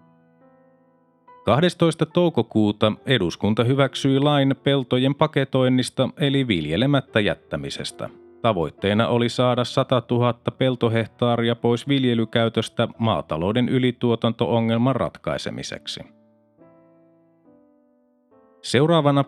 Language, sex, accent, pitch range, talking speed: Finnish, male, native, 110-135 Hz, 70 wpm